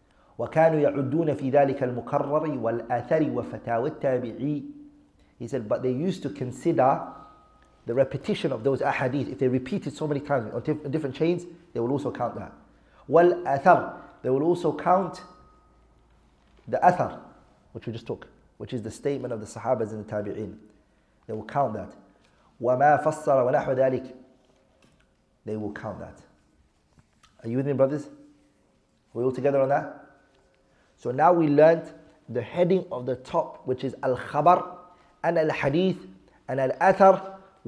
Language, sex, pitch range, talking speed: English, male, 125-165 Hz, 130 wpm